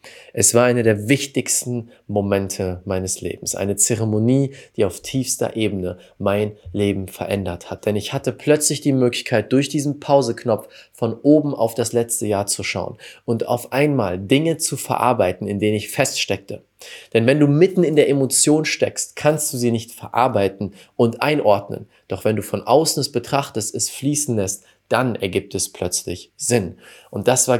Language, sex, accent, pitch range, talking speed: German, male, German, 105-135 Hz, 170 wpm